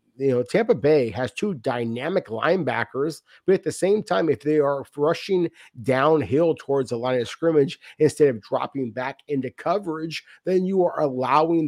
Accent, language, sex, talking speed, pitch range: American, English, male, 170 wpm, 125-160 Hz